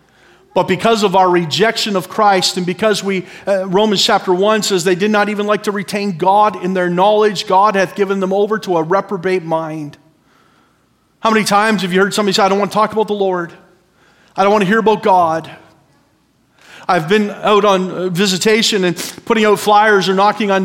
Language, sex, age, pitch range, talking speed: English, male, 40-59, 180-220 Hz, 205 wpm